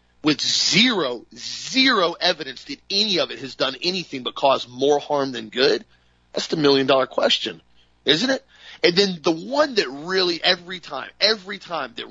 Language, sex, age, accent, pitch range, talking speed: English, male, 40-59, American, 115-185 Hz, 170 wpm